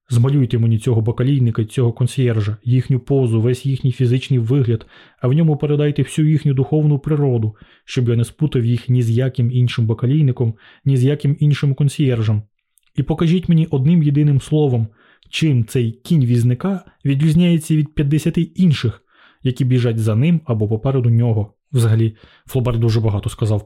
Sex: male